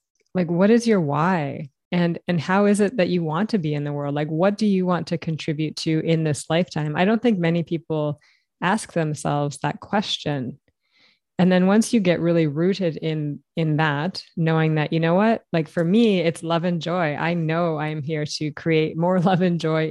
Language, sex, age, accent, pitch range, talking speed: English, female, 20-39, American, 155-185 Hz, 210 wpm